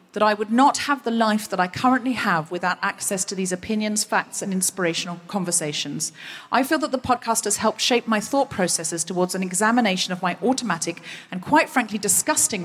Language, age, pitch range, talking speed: English, 40-59, 170-235 Hz, 195 wpm